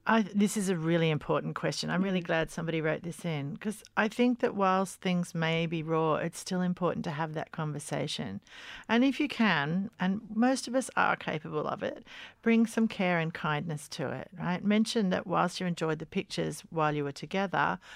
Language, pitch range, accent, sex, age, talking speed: English, 155-195 Hz, Australian, female, 40-59, 200 wpm